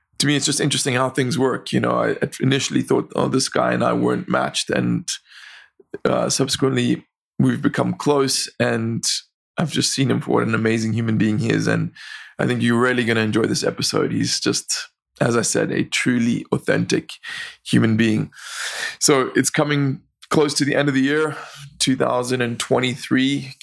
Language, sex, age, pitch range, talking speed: English, male, 20-39, 115-140 Hz, 180 wpm